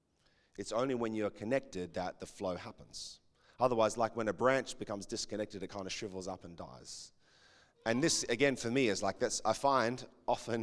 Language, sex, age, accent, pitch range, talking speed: English, male, 30-49, Australian, 105-140 Hz, 190 wpm